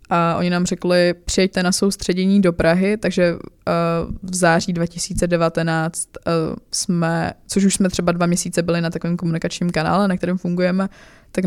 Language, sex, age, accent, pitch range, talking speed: Czech, female, 20-39, native, 170-185 Hz, 150 wpm